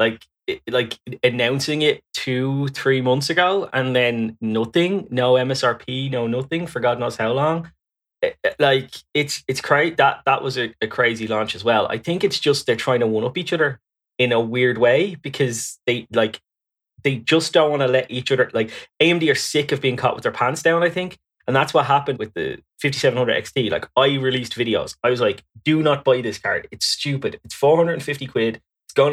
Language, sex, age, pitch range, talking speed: English, male, 20-39, 125-150 Hz, 200 wpm